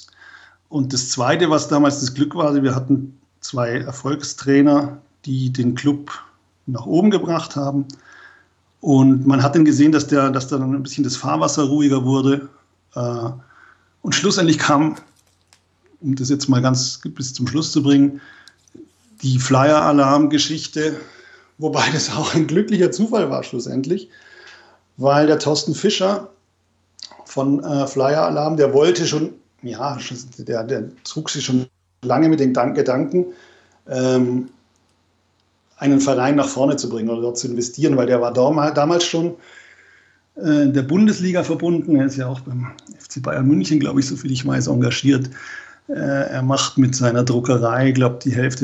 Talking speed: 150 wpm